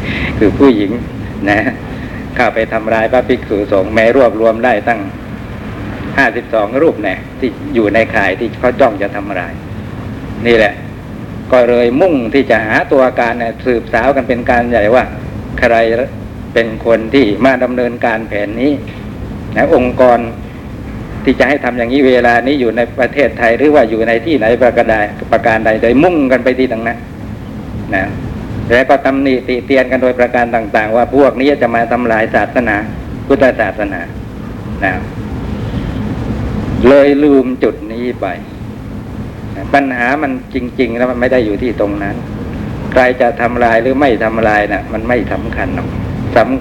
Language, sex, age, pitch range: Thai, male, 60-79, 110-125 Hz